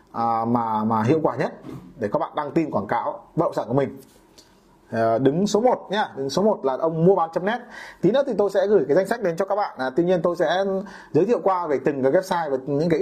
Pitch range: 145-205 Hz